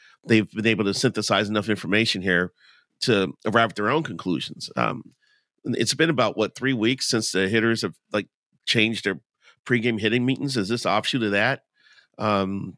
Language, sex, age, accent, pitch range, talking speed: English, male, 40-59, American, 100-120 Hz, 175 wpm